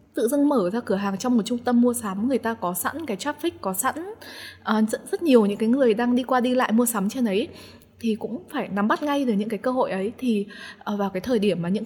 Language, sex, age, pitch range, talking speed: Vietnamese, female, 20-39, 200-250 Hz, 280 wpm